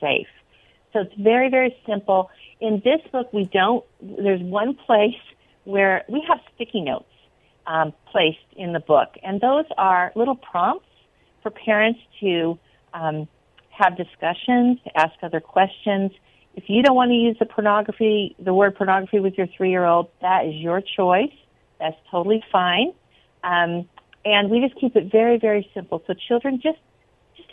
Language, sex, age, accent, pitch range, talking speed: English, female, 50-69, American, 185-240 Hz, 160 wpm